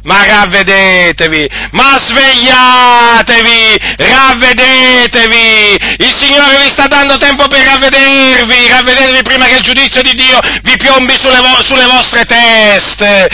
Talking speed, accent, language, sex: 120 wpm, native, Italian, male